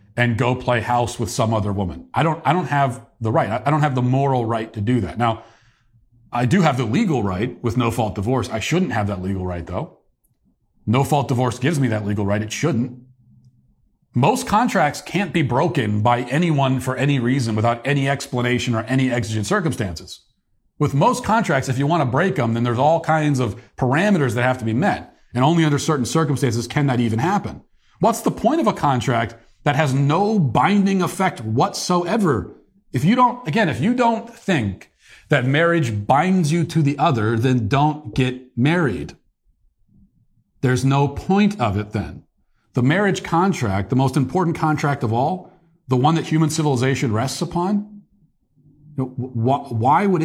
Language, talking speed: English, 180 wpm